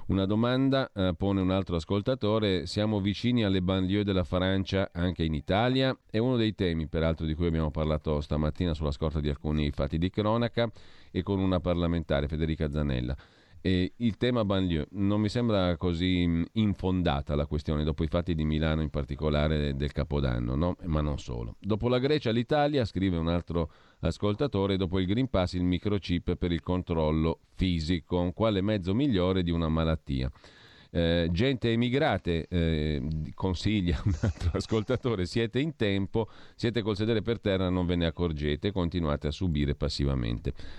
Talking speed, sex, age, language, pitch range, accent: 165 wpm, male, 40-59, Italian, 80-105 Hz, native